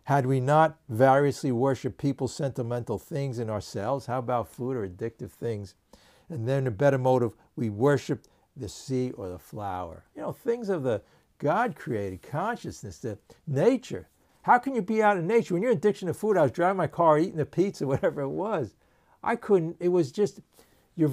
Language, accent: English, American